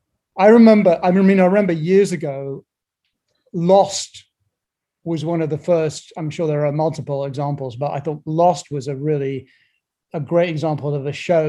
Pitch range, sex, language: 140-160 Hz, male, English